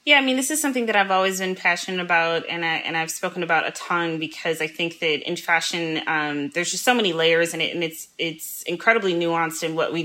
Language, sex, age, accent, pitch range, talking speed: English, female, 20-39, American, 150-165 Hz, 250 wpm